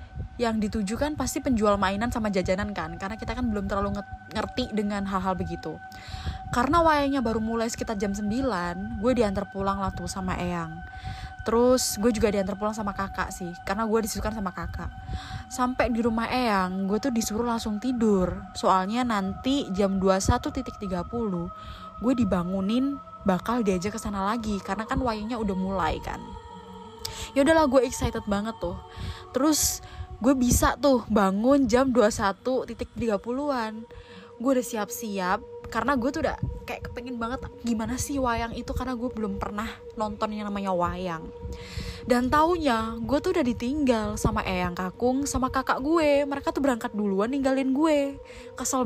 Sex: female